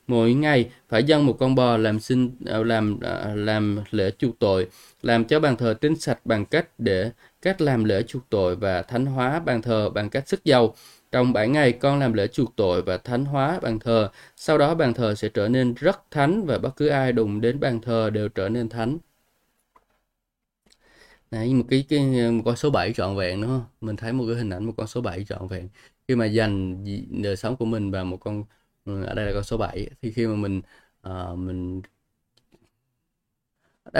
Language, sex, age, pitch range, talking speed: Vietnamese, male, 20-39, 105-130 Hz, 205 wpm